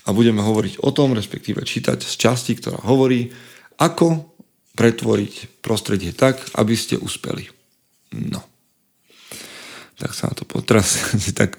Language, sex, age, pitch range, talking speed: Slovak, male, 40-59, 100-130 Hz, 130 wpm